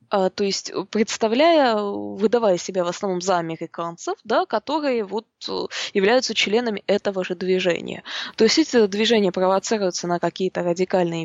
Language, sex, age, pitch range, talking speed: English, female, 20-39, 180-235 Hz, 125 wpm